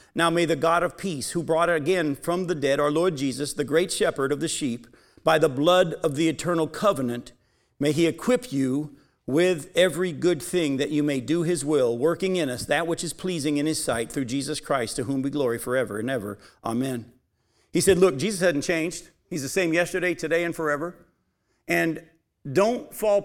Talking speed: 205 wpm